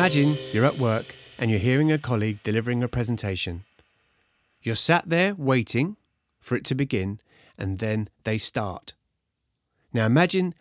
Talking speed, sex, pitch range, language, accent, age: 145 wpm, male, 105-130 Hz, English, British, 30-49